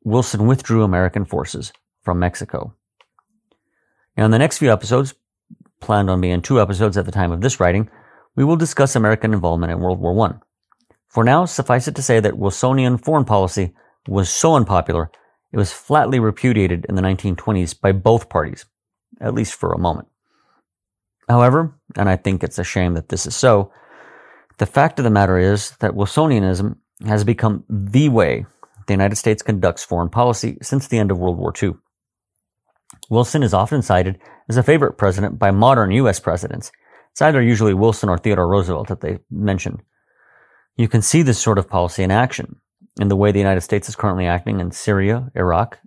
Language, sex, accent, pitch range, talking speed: English, male, American, 95-125 Hz, 180 wpm